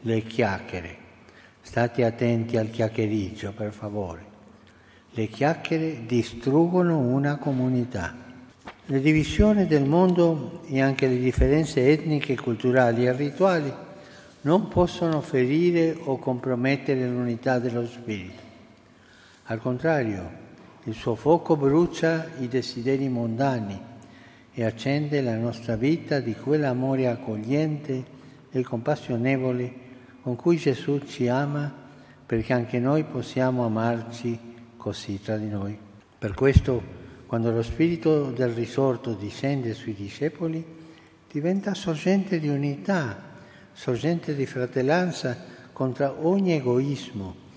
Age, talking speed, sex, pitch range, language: 60-79, 110 wpm, male, 120-155 Hz, Italian